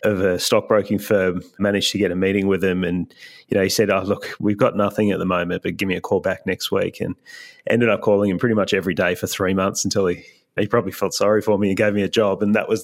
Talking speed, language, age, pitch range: 280 wpm, English, 30-49, 100-115 Hz